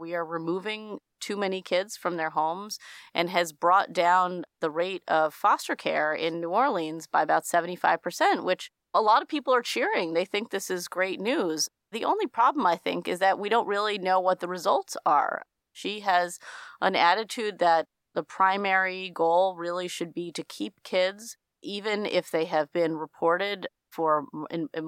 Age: 30-49